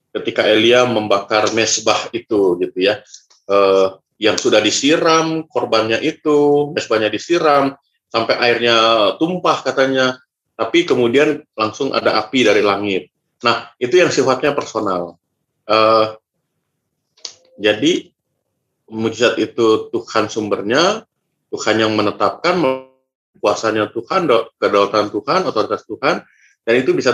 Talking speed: 110 wpm